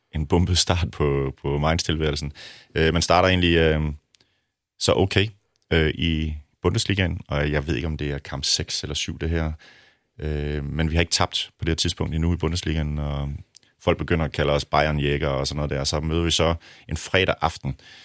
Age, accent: 30-49, native